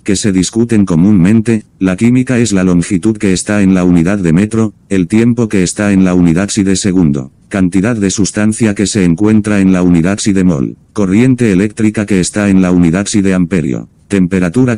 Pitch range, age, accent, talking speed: 90-110 Hz, 50-69, Spanish, 200 wpm